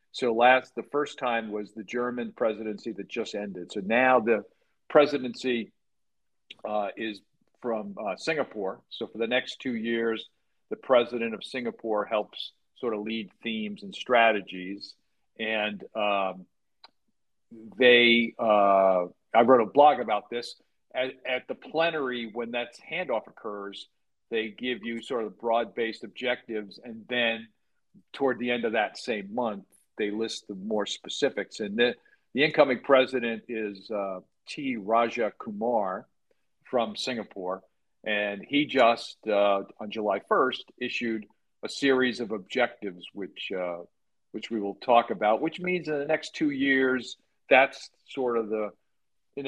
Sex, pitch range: male, 105-130 Hz